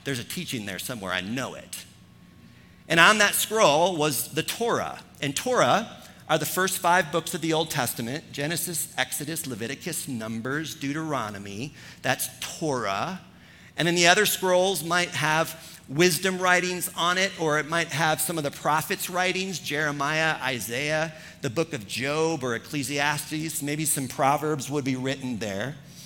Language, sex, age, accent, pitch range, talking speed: English, male, 50-69, American, 135-175 Hz, 155 wpm